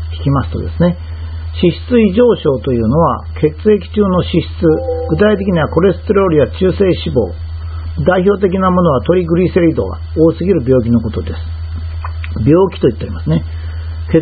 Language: Japanese